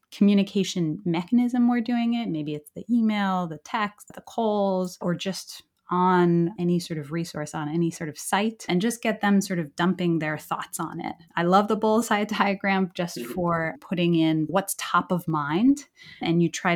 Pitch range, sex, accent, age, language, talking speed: 165-205 Hz, female, American, 20-39, English, 185 wpm